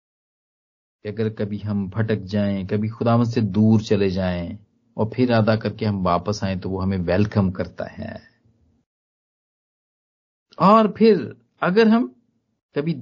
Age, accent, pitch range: 50-69, native, 105-160 Hz